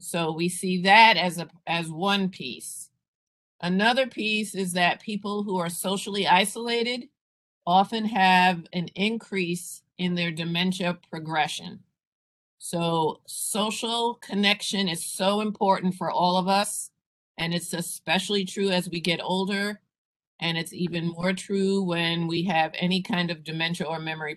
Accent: American